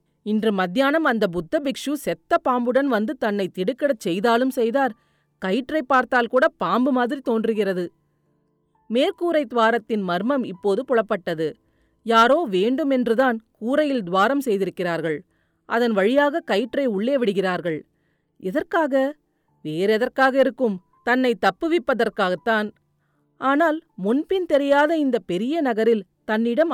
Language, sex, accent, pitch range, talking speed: Tamil, female, native, 210-275 Hz, 100 wpm